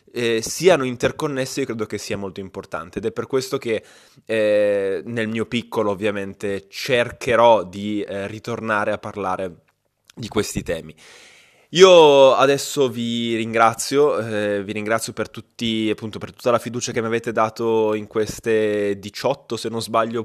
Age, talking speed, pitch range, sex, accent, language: 10-29, 155 wpm, 100-130 Hz, male, native, Italian